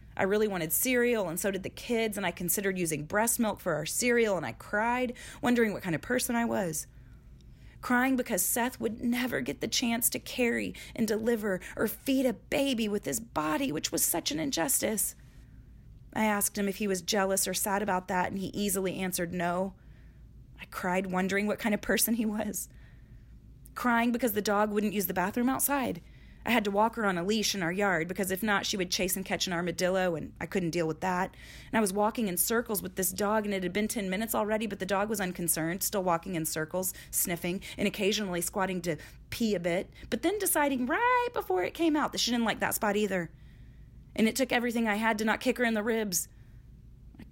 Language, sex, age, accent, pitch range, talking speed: English, female, 30-49, American, 180-230 Hz, 220 wpm